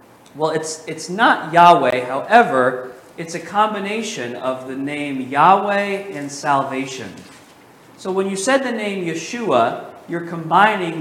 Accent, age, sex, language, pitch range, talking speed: American, 40-59, male, English, 140-190 Hz, 130 wpm